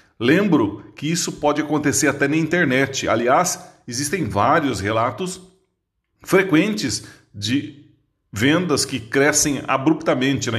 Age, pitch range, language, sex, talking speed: 40-59, 115-165 Hz, Portuguese, male, 110 wpm